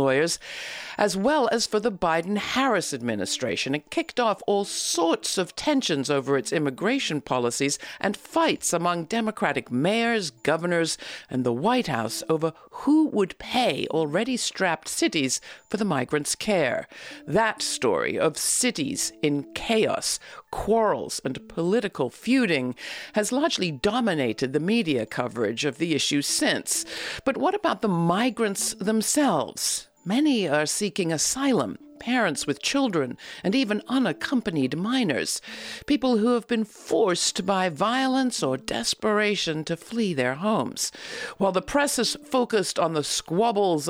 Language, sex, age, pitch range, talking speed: English, female, 50-69, 155-245 Hz, 135 wpm